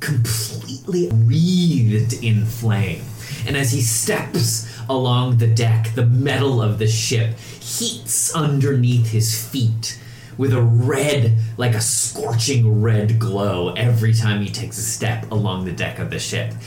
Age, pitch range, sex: 30-49, 110-125 Hz, male